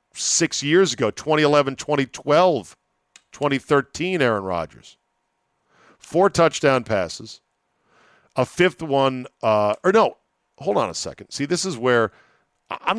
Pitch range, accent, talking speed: 120-150 Hz, American, 120 wpm